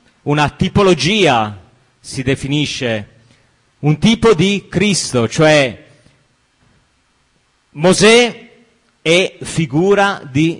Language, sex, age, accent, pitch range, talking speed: Italian, male, 30-49, native, 135-165 Hz, 75 wpm